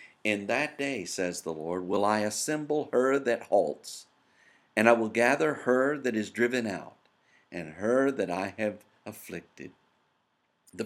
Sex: male